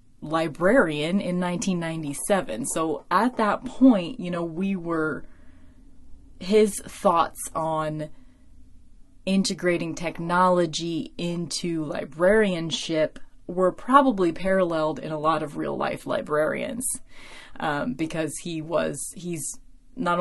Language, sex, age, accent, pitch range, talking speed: English, female, 20-39, American, 160-200 Hz, 100 wpm